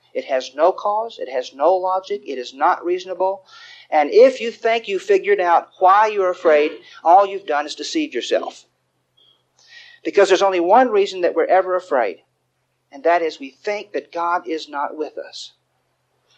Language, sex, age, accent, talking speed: English, male, 40-59, American, 175 wpm